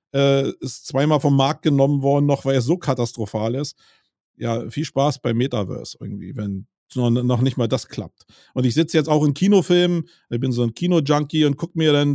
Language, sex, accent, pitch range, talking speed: German, male, German, 125-150 Hz, 200 wpm